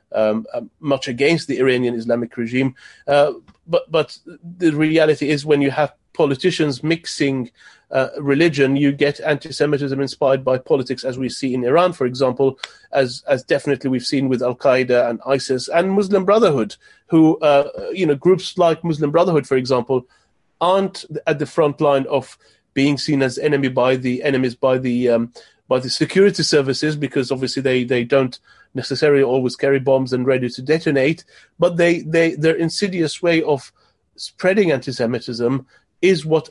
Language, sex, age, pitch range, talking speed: English, male, 30-49, 130-160 Hz, 165 wpm